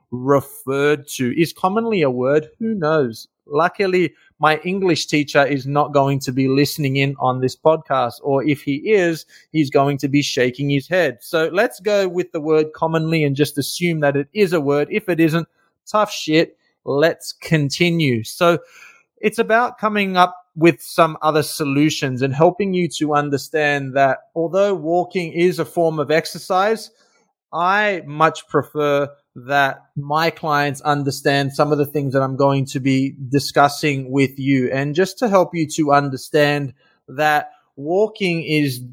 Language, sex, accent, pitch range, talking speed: English, male, Australian, 140-170 Hz, 165 wpm